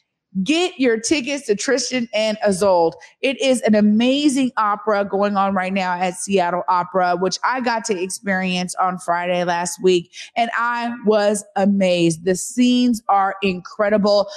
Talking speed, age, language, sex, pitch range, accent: 150 wpm, 30-49, English, female, 190-235 Hz, American